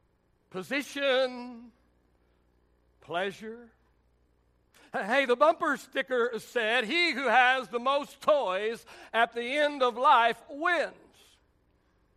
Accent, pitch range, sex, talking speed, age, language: American, 190-290 Hz, male, 95 wpm, 60-79, English